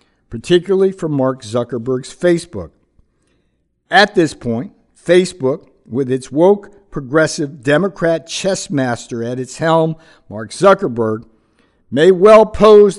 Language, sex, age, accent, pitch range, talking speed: English, male, 50-69, American, 120-180 Hz, 110 wpm